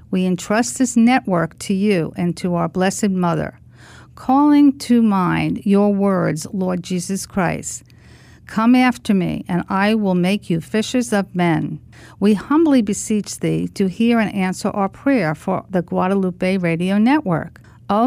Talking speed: 155 wpm